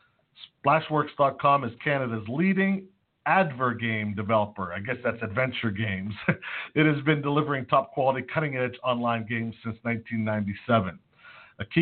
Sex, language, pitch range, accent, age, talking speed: male, English, 115-140 Hz, American, 50-69, 120 wpm